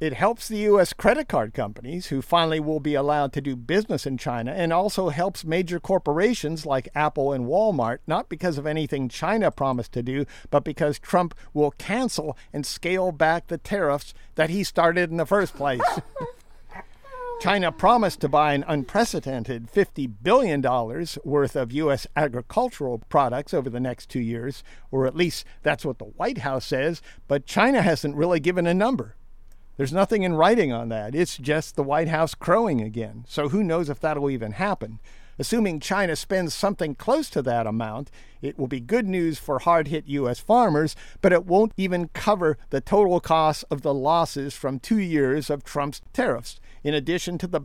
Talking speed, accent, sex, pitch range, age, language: 180 wpm, American, male, 135-175 Hz, 50-69, English